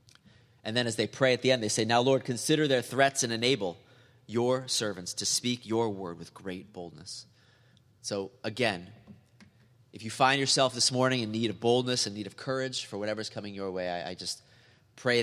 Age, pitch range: 30-49, 105-125 Hz